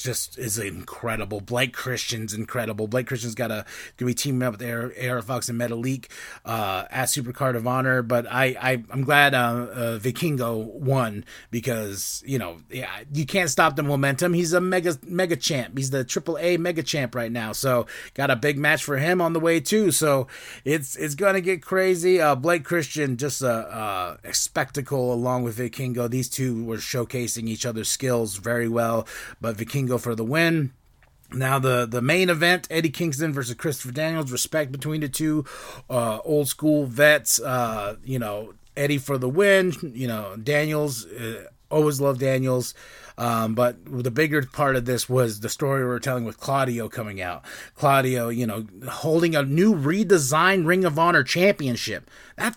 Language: English